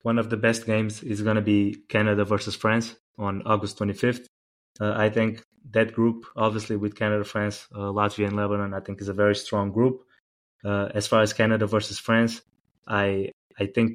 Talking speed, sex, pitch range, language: 195 wpm, male, 105-115 Hz, English